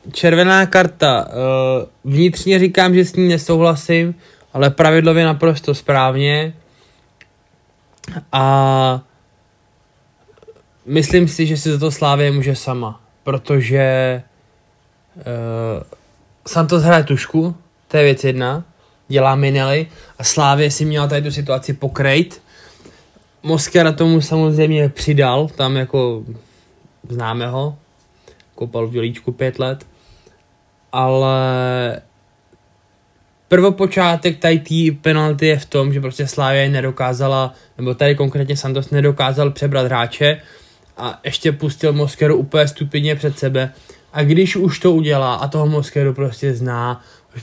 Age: 20-39